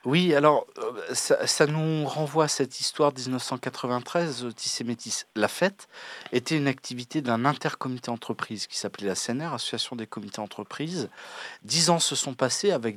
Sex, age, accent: male, 40-59, French